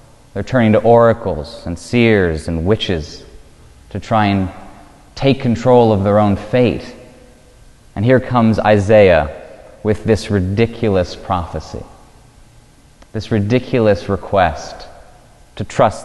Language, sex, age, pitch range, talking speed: English, male, 30-49, 100-120 Hz, 110 wpm